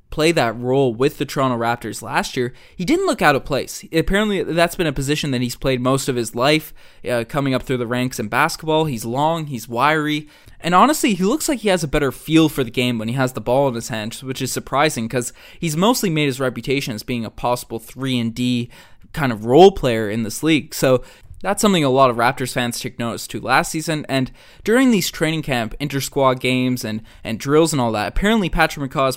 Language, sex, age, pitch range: English, male, 20-39, 120-155 Hz